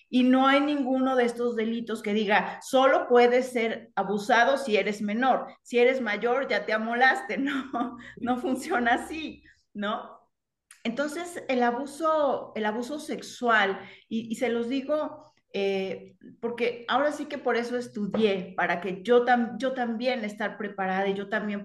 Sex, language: female, Spanish